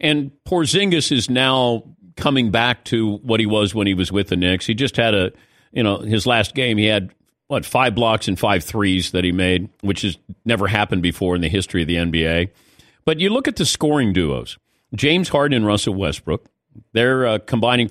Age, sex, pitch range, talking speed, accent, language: 50-69, male, 100-135 Hz, 210 wpm, American, English